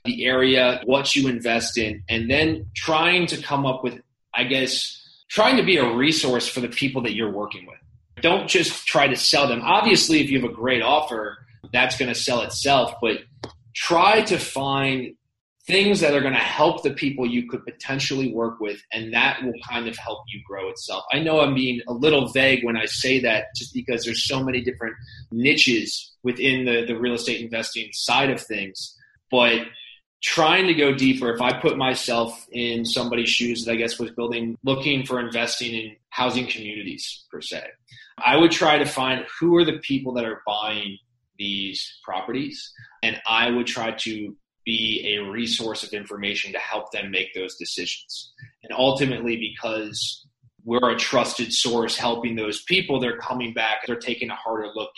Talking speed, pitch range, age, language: 185 wpm, 115-130 Hz, 20-39, English